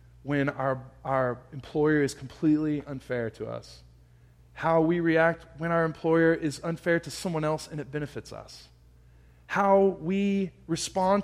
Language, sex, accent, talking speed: English, male, American, 145 wpm